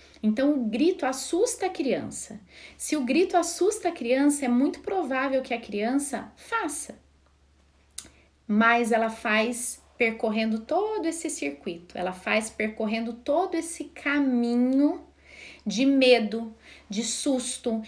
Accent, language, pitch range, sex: Brazilian, Portuguese, 225-290 Hz, female